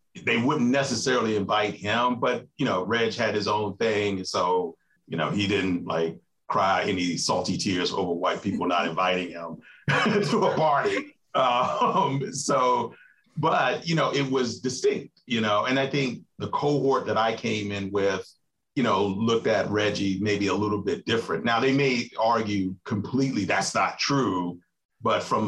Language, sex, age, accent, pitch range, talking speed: English, male, 40-59, American, 90-120 Hz, 170 wpm